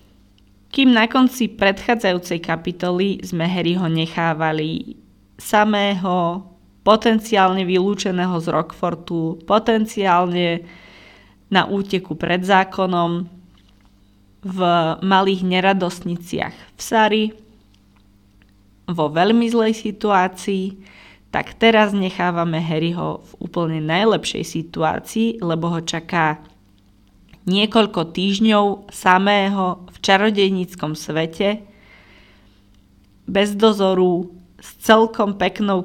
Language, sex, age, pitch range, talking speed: Slovak, female, 20-39, 160-195 Hz, 80 wpm